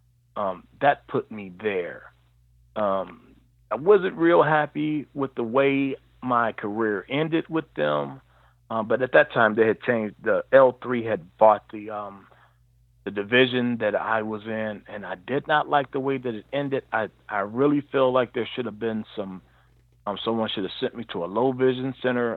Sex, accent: male, American